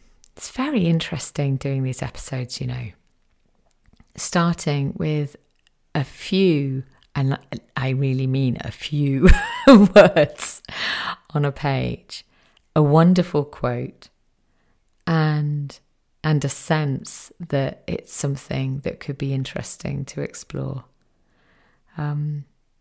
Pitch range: 140-190 Hz